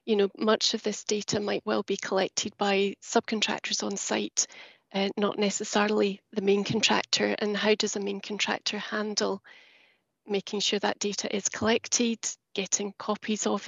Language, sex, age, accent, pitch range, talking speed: English, female, 30-49, British, 195-220 Hz, 160 wpm